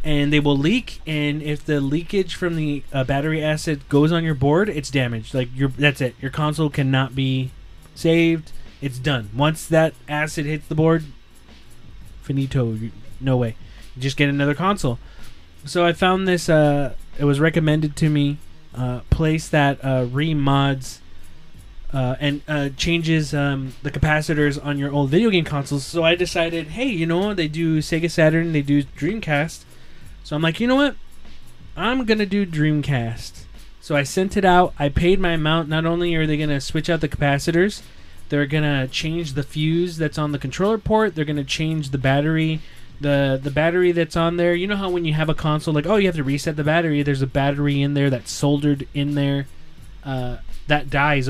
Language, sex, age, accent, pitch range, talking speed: English, male, 20-39, American, 135-160 Hz, 195 wpm